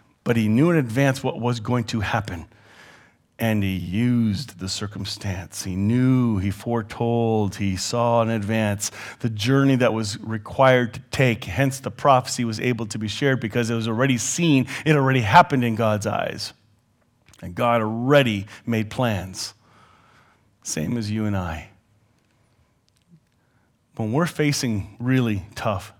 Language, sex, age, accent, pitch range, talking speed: English, male, 40-59, American, 105-130 Hz, 150 wpm